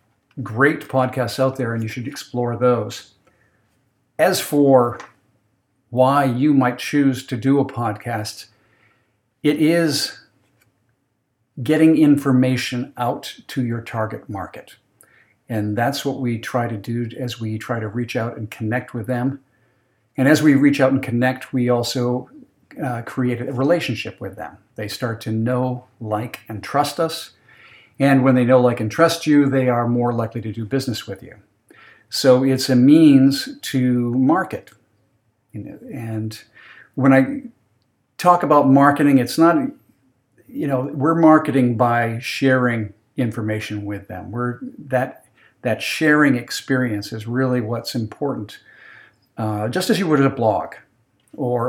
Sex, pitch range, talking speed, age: male, 115-135 Hz, 145 wpm, 50-69